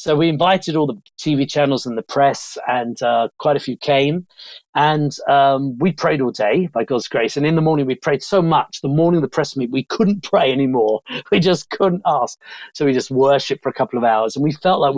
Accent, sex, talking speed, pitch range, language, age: British, male, 240 wpm, 130-160 Hz, English, 40-59